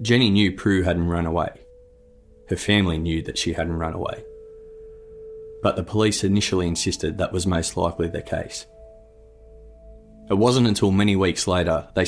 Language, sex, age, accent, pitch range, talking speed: English, male, 20-39, Australian, 85-100 Hz, 160 wpm